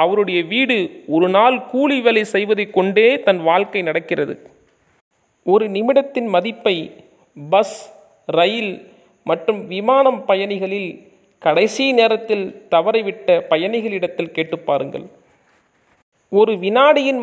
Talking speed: 95 wpm